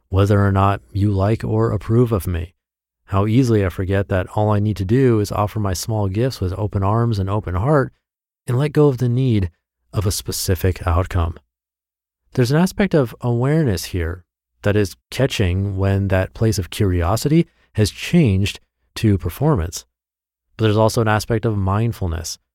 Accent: American